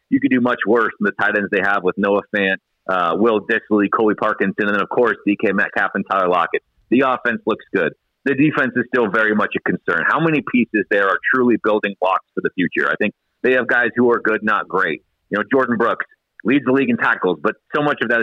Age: 40-59